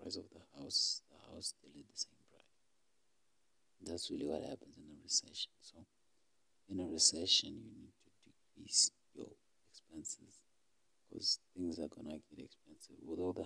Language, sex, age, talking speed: English, male, 60-79, 165 wpm